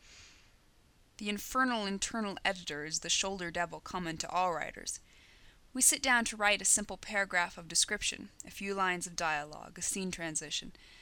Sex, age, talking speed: female, 20-39, 165 wpm